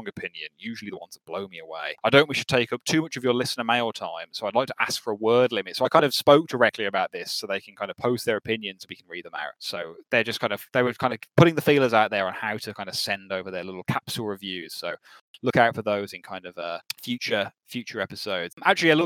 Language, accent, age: English, British, 20-39